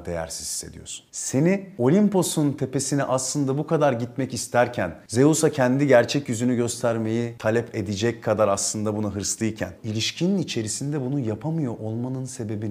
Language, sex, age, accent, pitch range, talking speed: Turkish, male, 40-59, native, 85-120 Hz, 125 wpm